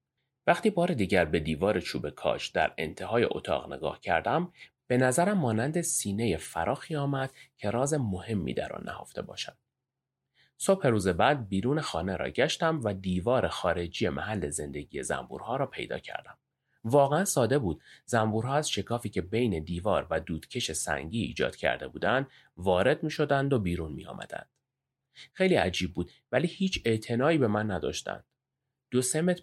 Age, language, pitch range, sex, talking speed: 30-49, Persian, 90-140 Hz, male, 150 wpm